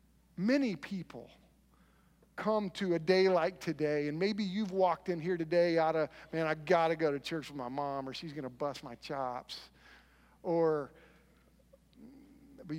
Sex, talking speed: male, 160 wpm